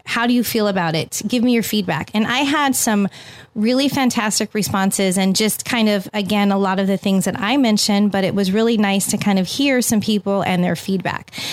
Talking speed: 230 wpm